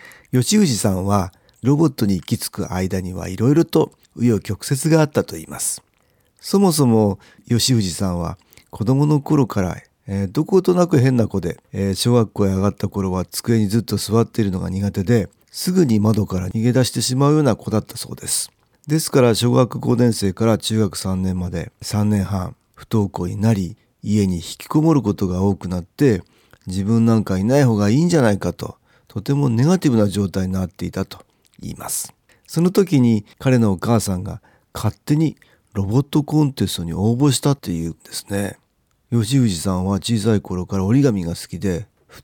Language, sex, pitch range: Japanese, male, 95-130 Hz